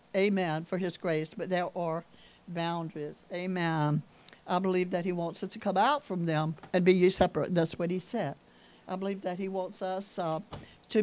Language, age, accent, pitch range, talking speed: English, 60-79, American, 175-240 Hz, 190 wpm